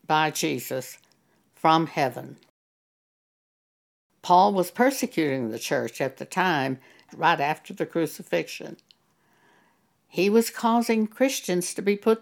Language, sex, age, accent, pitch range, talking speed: English, female, 60-79, American, 155-215 Hz, 115 wpm